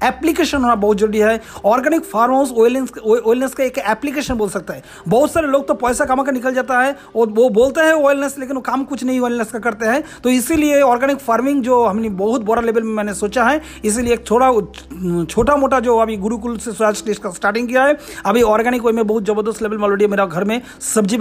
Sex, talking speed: male, 55 wpm